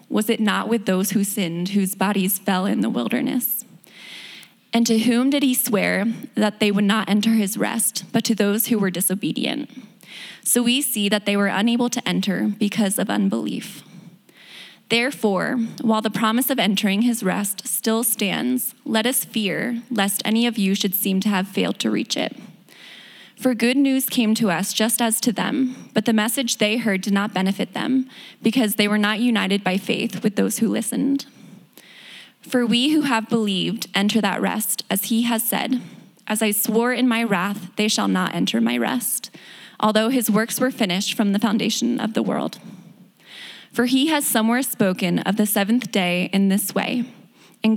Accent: American